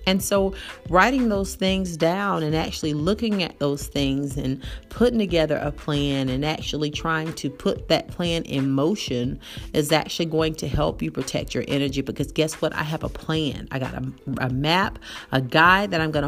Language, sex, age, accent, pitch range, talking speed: English, female, 40-59, American, 135-165 Hz, 190 wpm